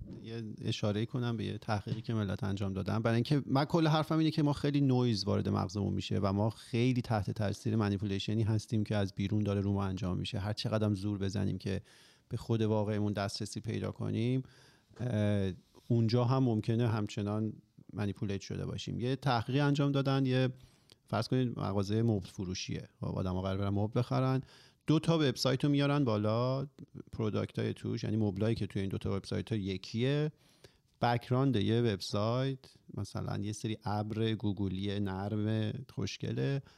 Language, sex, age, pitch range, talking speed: Persian, male, 40-59, 105-130 Hz, 150 wpm